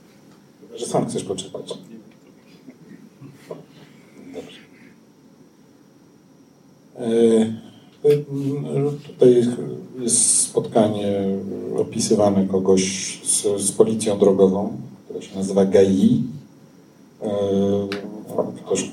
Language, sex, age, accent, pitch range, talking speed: Polish, male, 50-69, native, 100-125 Hz, 65 wpm